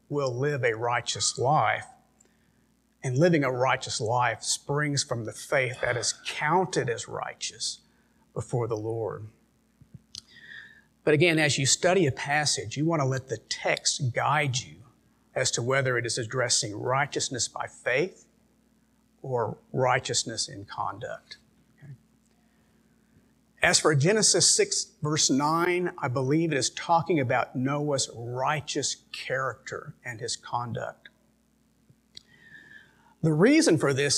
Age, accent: 50-69, American